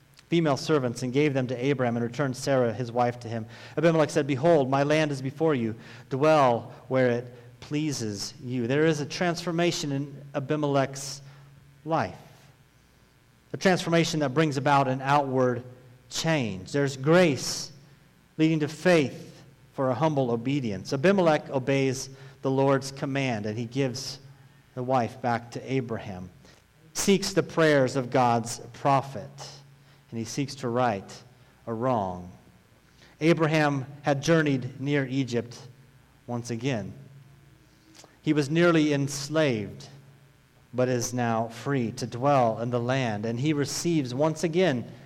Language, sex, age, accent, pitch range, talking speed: English, male, 40-59, American, 125-155 Hz, 135 wpm